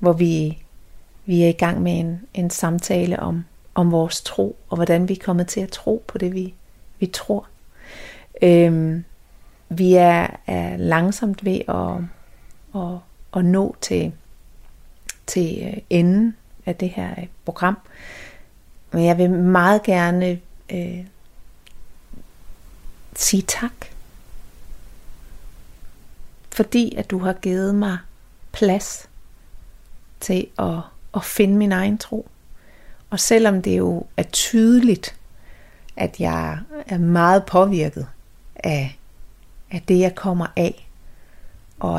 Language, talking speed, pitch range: Danish, 115 wpm, 170-195 Hz